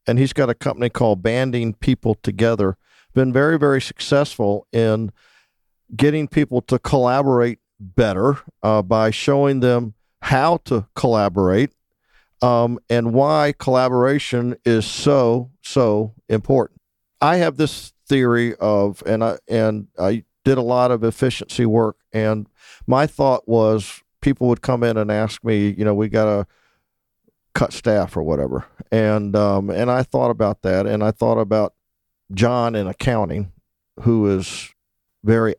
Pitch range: 105-125 Hz